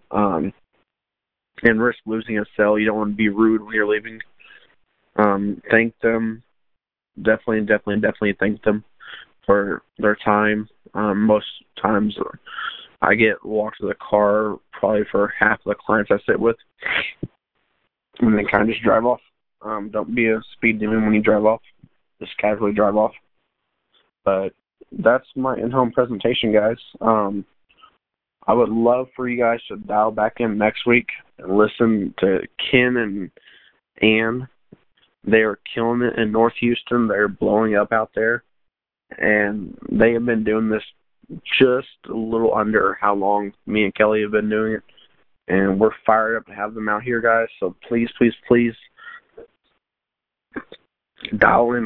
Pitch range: 105-120 Hz